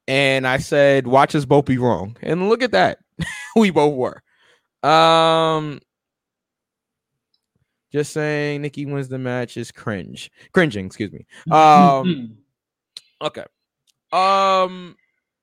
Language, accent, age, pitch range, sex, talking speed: English, American, 20-39, 130-180 Hz, male, 115 wpm